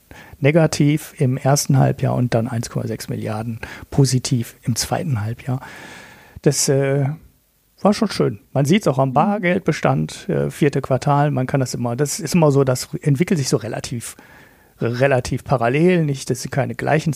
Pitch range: 125-150 Hz